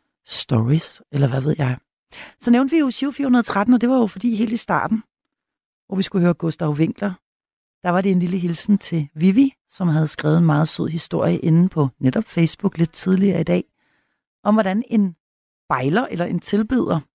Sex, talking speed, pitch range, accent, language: female, 190 wpm, 150-195 Hz, native, Danish